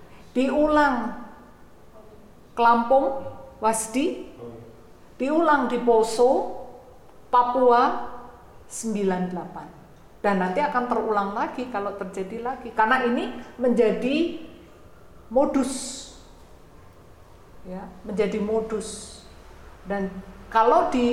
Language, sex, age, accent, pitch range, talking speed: Indonesian, female, 50-69, native, 200-255 Hz, 75 wpm